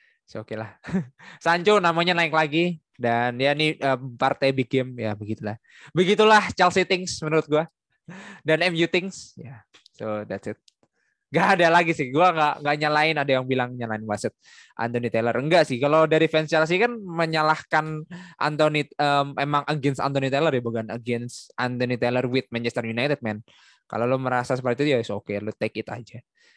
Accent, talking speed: native, 180 wpm